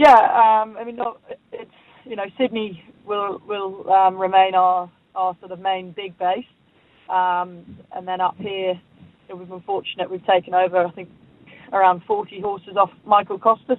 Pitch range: 180-205 Hz